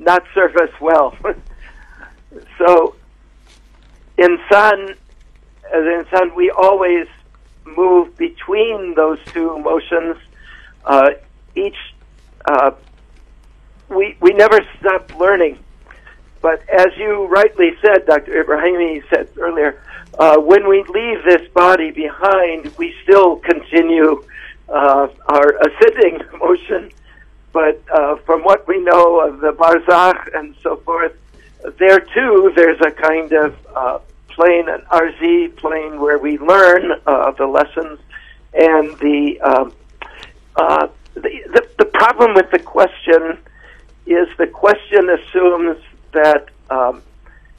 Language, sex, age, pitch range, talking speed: Persian, male, 60-79, 155-195 Hz, 110 wpm